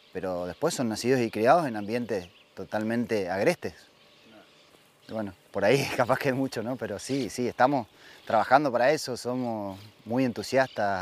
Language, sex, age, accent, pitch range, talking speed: Spanish, male, 30-49, Argentinian, 105-130 Hz, 150 wpm